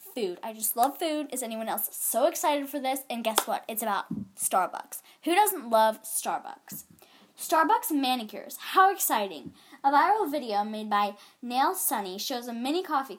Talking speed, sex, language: 170 wpm, female, English